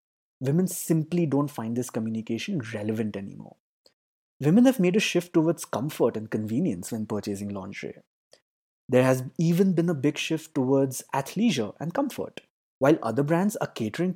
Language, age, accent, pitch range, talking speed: English, 20-39, Indian, 120-180 Hz, 155 wpm